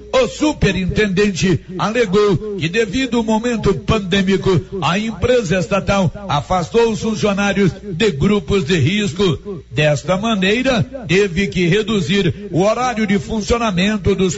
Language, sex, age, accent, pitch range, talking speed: Portuguese, male, 60-79, Brazilian, 180-215 Hz, 115 wpm